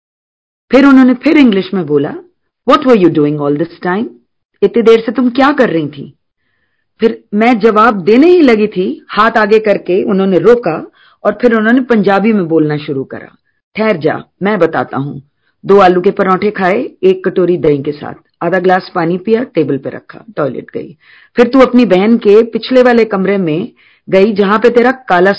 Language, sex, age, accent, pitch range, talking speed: Hindi, female, 40-59, native, 170-245 Hz, 185 wpm